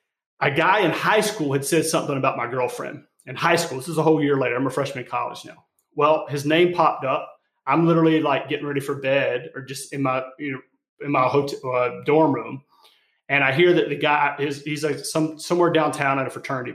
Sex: male